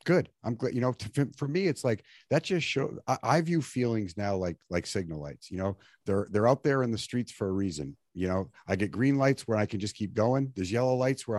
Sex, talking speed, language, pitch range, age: male, 260 wpm, English, 105-135 Hz, 50-69